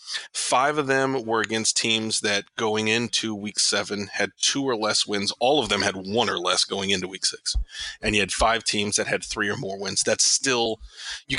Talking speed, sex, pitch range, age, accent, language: 215 wpm, male, 110-145 Hz, 30-49, American, English